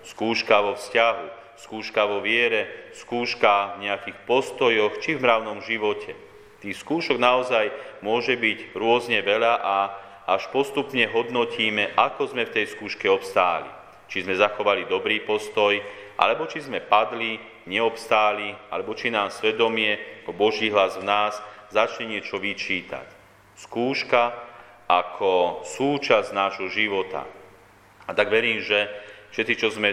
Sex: male